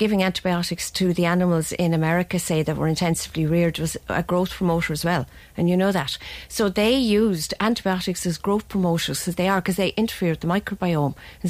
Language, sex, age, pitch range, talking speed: English, female, 40-59, 170-220 Hz, 200 wpm